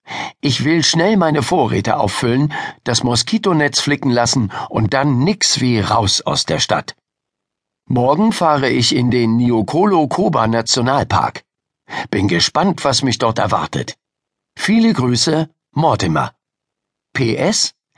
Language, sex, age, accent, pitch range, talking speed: German, male, 60-79, German, 115-150 Hz, 115 wpm